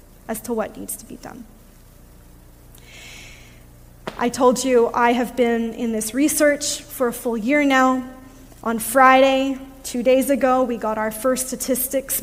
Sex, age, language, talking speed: female, 20-39, English, 150 wpm